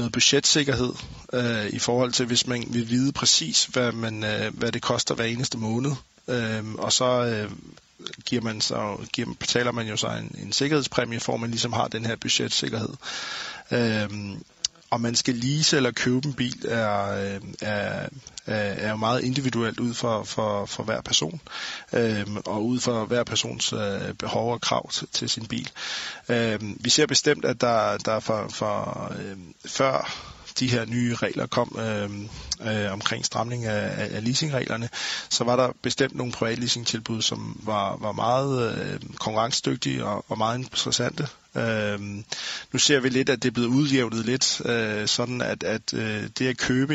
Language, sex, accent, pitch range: Danish, male, native, 110-125 Hz